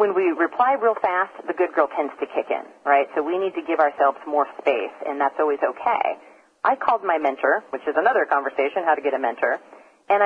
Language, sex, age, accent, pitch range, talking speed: English, female, 40-59, American, 145-215 Hz, 230 wpm